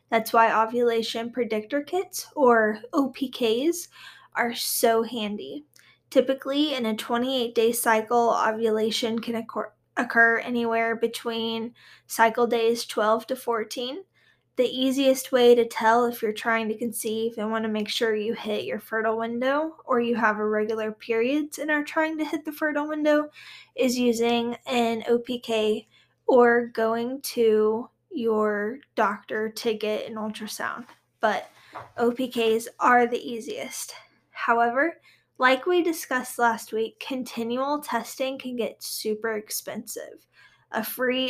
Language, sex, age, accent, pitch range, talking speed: English, female, 20-39, American, 225-260 Hz, 130 wpm